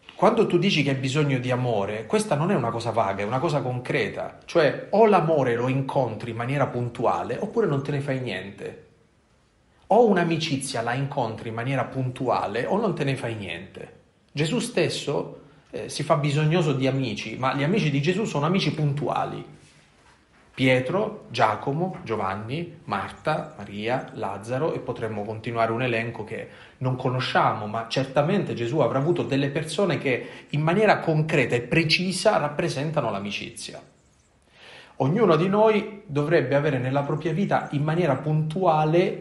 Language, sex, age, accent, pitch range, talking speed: Italian, male, 30-49, native, 115-165 Hz, 155 wpm